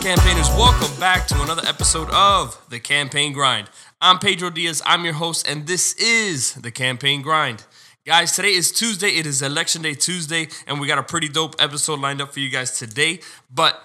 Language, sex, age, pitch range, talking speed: English, male, 20-39, 130-155 Hz, 195 wpm